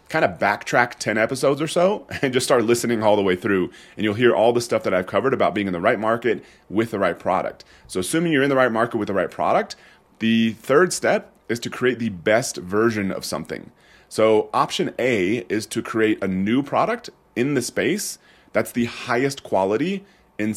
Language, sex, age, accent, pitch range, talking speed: English, male, 30-49, American, 100-125 Hz, 215 wpm